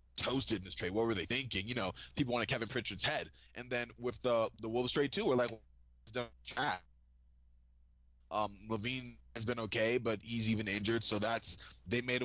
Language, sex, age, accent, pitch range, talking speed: English, male, 20-39, American, 100-130 Hz, 190 wpm